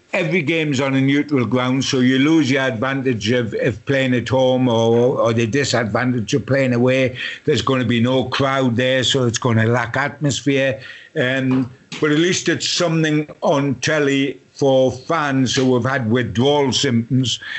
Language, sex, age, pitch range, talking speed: English, male, 60-79, 120-140 Hz, 175 wpm